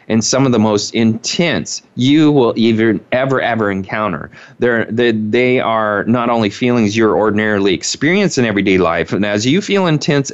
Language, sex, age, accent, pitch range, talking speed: English, male, 30-49, American, 110-135 Hz, 170 wpm